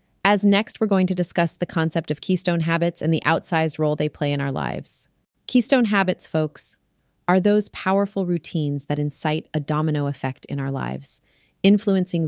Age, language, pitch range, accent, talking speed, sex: 30-49, English, 150-190 Hz, American, 175 wpm, female